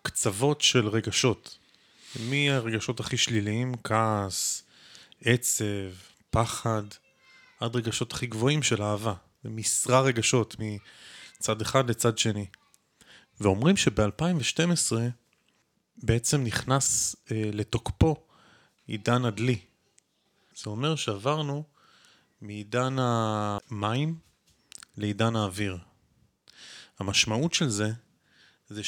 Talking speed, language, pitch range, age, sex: 85 wpm, Hebrew, 105-130 Hz, 30-49, male